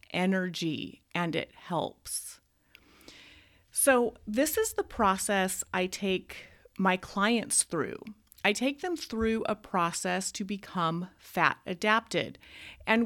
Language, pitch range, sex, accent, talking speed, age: English, 180-235 Hz, female, American, 115 wpm, 30-49